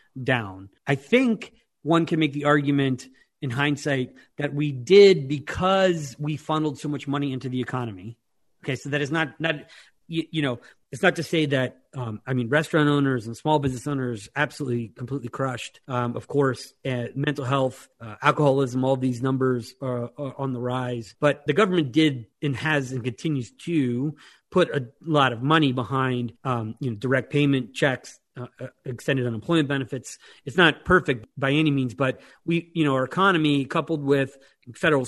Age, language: 30-49, English